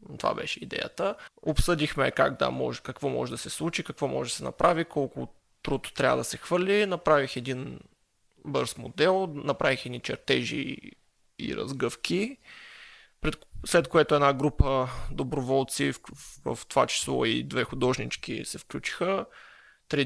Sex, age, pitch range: male, 20-39, 135-180 Hz